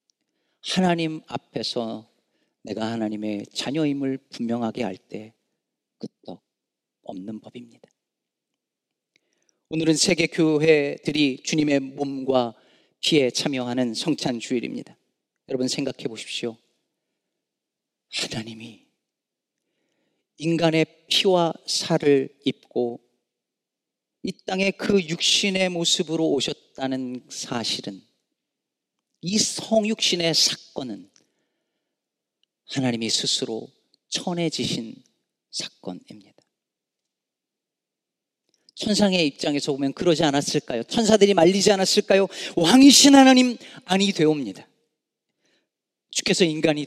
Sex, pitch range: male, 130-205 Hz